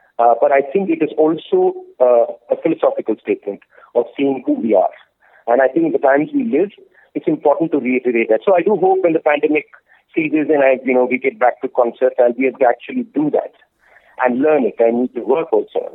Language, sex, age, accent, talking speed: Malayalam, male, 50-69, native, 220 wpm